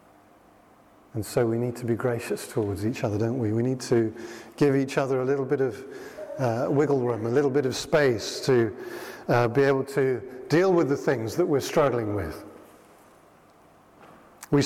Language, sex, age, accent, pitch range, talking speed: English, male, 40-59, British, 120-145 Hz, 180 wpm